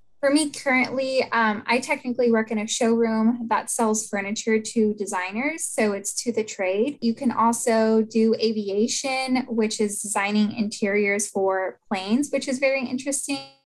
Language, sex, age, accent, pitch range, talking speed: English, female, 10-29, American, 210-245 Hz, 155 wpm